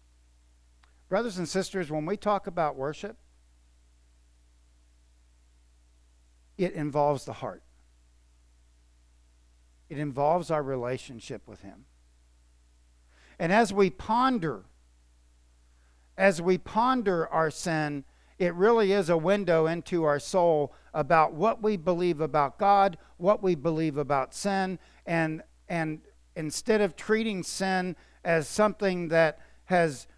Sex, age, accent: male, 50-69, American